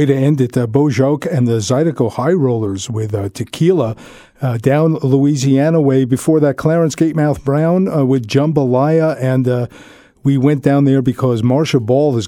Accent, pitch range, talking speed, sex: American, 130-155 Hz, 175 wpm, male